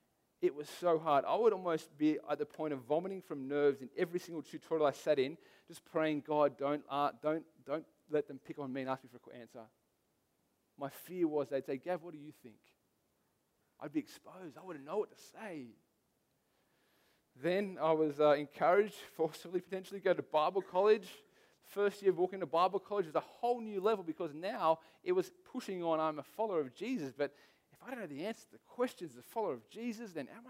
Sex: male